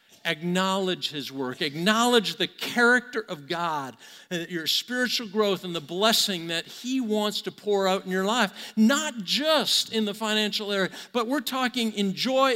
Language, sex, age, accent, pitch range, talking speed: English, male, 50-69, American, 195-250 Hz, 165 wpm